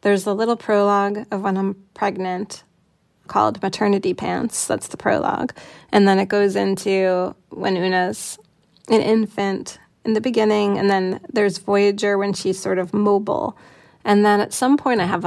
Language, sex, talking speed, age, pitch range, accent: English, female, 165 wpm, 20-39, 190-210 Hz, American